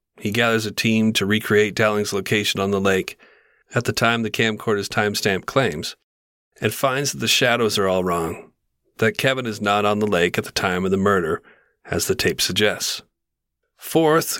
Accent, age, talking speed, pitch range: American, 40-59, 185 wpm, 95-115 Hz